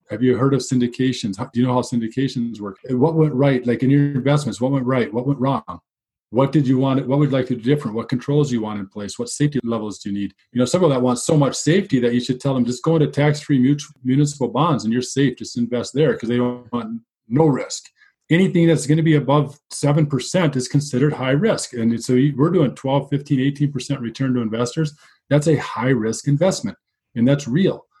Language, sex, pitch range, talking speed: English, male, 120-145 Hz, 235 wpm